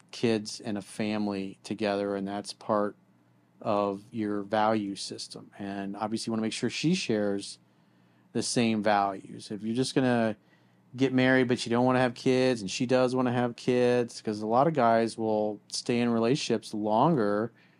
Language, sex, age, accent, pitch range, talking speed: English, male, 40-59, American, 105-130 Hz, 185 wpm